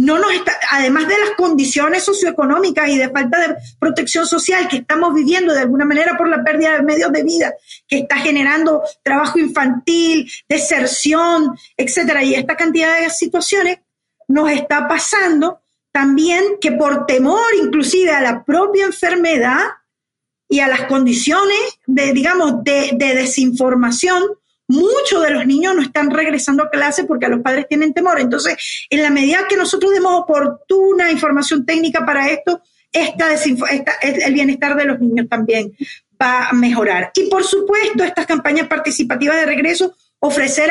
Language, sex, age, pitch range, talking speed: Spanish, female, 40-59, 275-340 Hz, 160 wpm